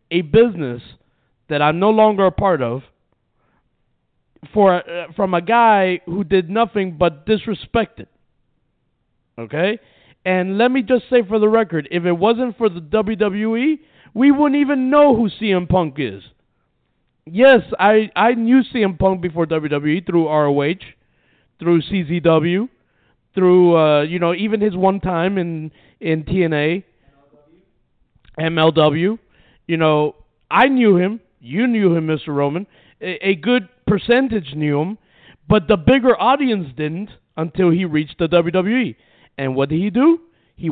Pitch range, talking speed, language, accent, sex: 155-220 Hz, 145 wpm, English, American, male